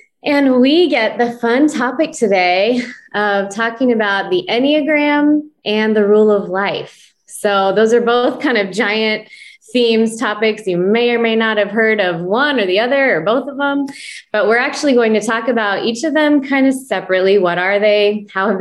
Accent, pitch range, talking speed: American, 195-245 Hz, 195 wpm